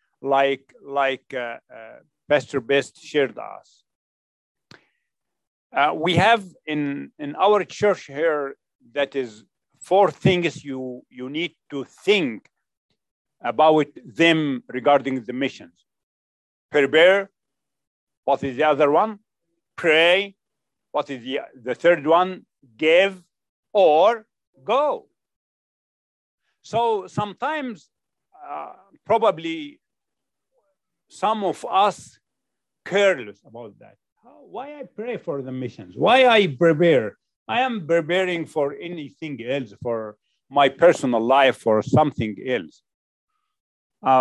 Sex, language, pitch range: male, English, 135-190 Hz